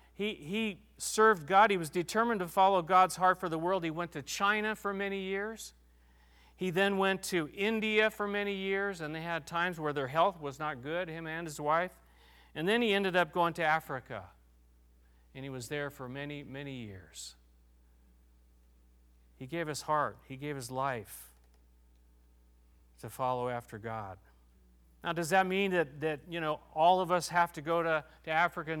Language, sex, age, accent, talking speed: English, male, 40-59, American, 185 wpm